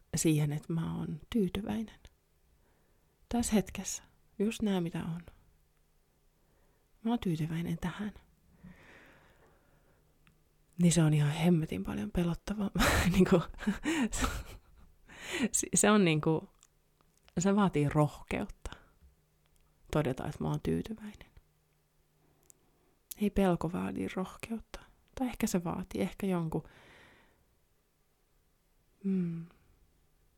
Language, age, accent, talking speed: Finnish, 30-49, native, 90 wpm